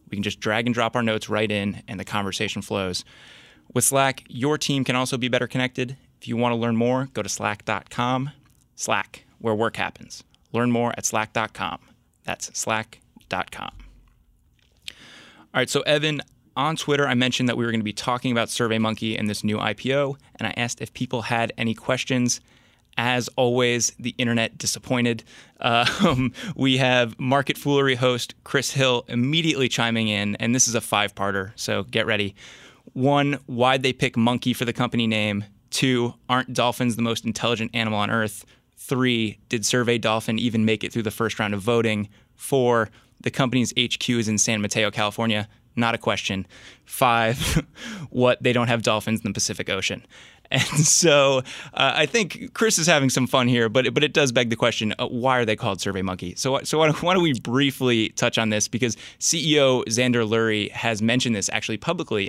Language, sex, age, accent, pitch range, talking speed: English, male, 20-39, American, 110-130 Hz, 185 wpm